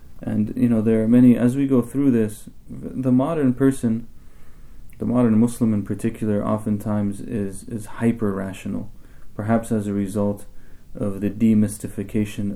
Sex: male